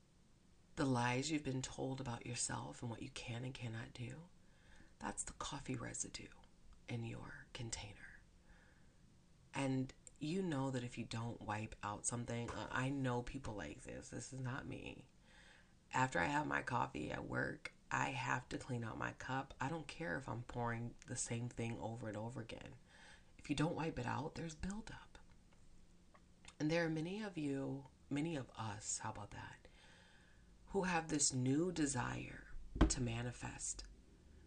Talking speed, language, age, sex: 160 wpm, English, 30-49, female